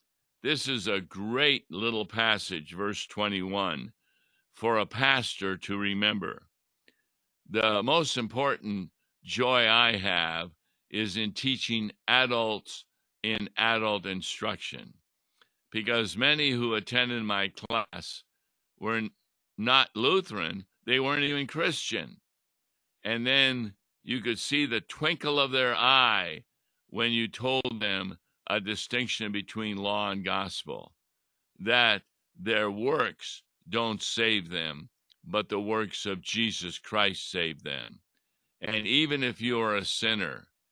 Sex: male